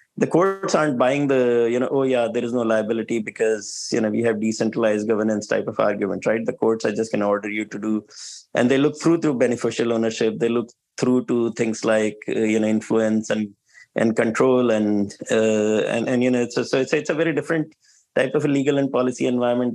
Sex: male